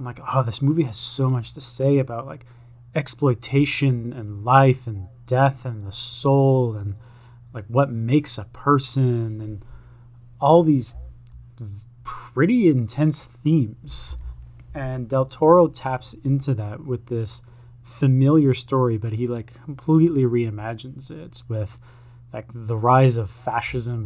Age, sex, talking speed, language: 20-39, male, 130 wpm, English